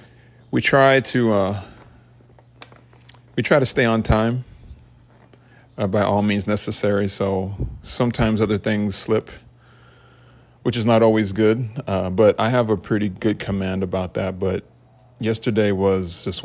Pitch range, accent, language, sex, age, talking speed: 95-120 Hz, American, English, male, 30-49, 140 wpm